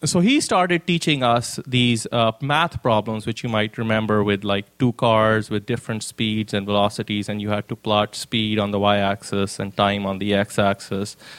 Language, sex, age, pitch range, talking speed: English, male, 20-39, 110-135 Hz, 190 wpm